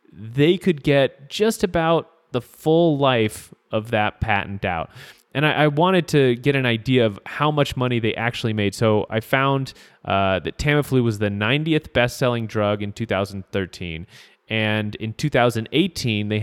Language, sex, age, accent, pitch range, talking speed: English, male, 30-49, American, 105-145 Hz, 160 wpm